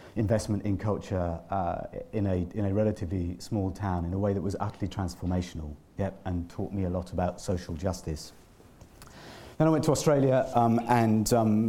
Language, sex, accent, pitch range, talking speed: English, male, British, 90-110 Hz, 170 wpm